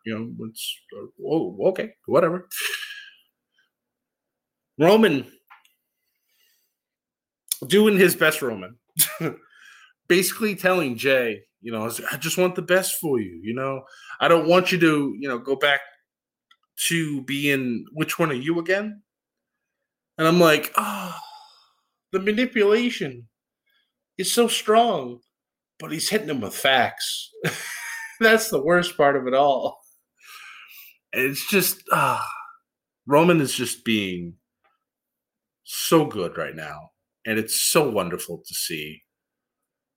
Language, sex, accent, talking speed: English, male, American, 120 wpm